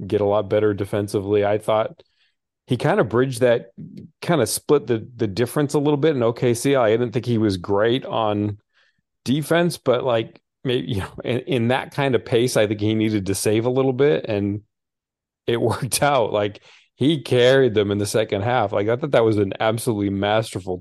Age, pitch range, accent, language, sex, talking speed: 40-59, 95-115 Hz, American, English, male, 210 wpm